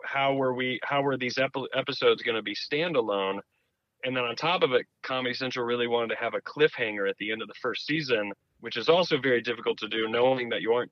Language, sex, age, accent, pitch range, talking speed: English, male, 30-49, American, 110-135 Hz, 235 wpm